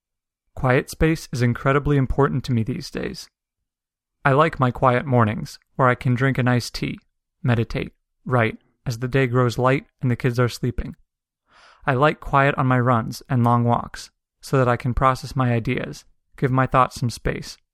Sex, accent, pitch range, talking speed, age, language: male, American, 125-140 Hz, 185 wpm, 30-49, English